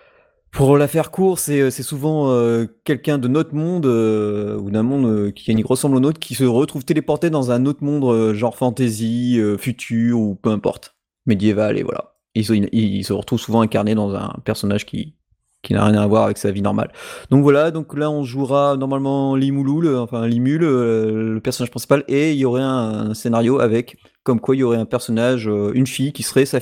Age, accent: 30-49, French